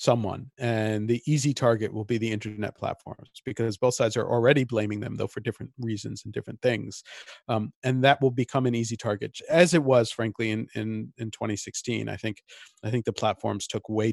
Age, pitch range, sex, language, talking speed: 40-59, 110-130 Hz, male, English, 205 wpm